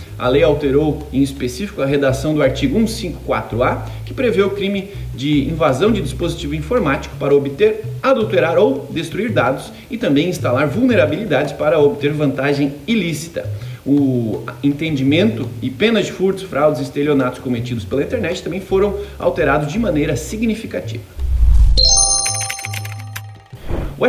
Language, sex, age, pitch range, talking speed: Portuguese, male, 30-49, 125-170 Hz, 130 wpm